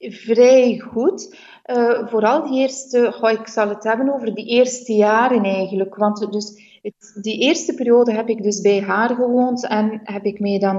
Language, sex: Dutch, female